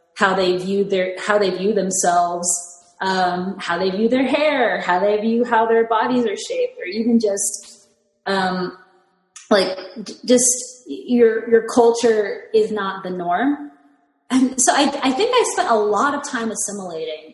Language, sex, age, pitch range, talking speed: English, female, 20-39, 190-250 Hz, 165 wpm